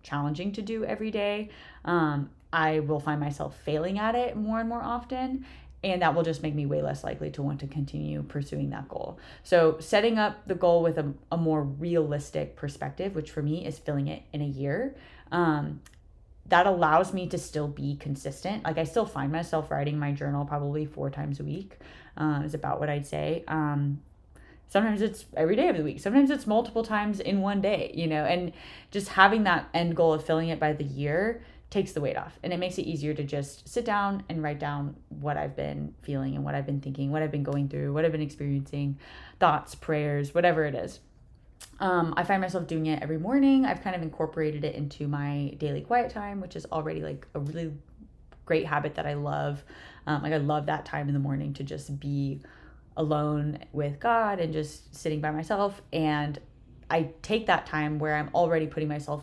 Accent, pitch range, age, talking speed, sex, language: American, 145-175 Hz, 20-39, 210 wpm, female, English